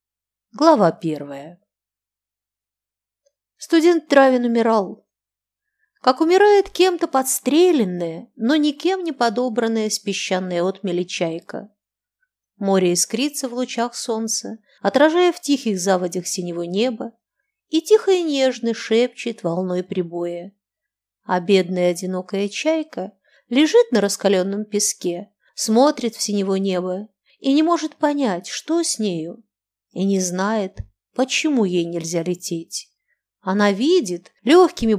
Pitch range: 180-270 Hz